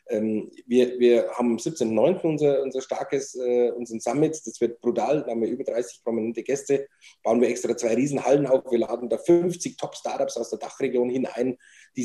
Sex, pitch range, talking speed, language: male, 115-135 Hz, 185 wpm, German